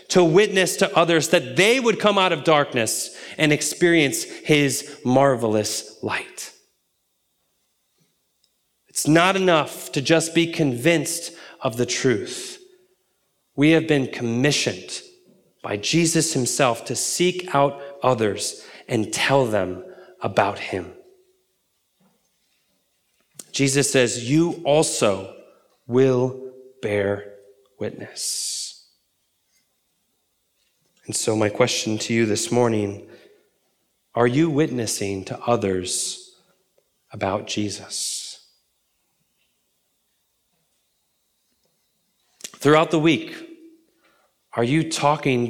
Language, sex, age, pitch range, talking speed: English, male, 30-49, 120-165 Hz, 90 wpm